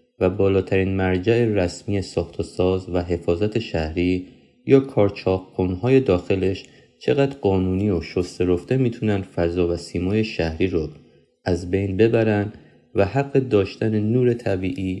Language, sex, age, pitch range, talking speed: Persian, male, 30-49, 90-110 Hz, 130 wpm